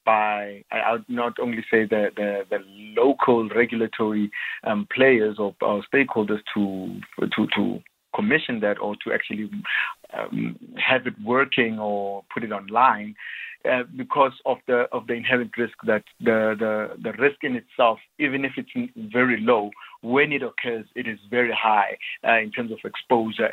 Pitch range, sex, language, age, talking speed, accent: 110-140 Hz, male, English, 50-69, 165 wpm, South African